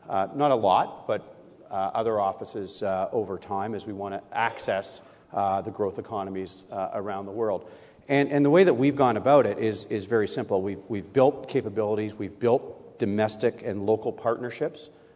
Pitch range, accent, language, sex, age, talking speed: 100-120 Hz, American, English, male, 40-59, 180 wpm